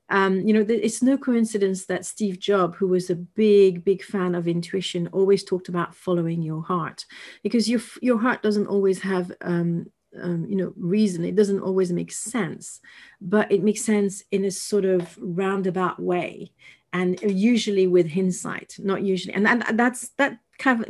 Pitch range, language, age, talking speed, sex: 180-215 Hz, English, 40-59, 175 wpm, female